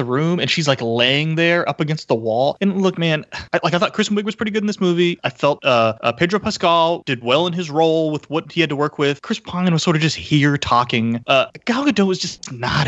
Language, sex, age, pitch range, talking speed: English, male, 30-49, 145-195 Hz, 260 wpm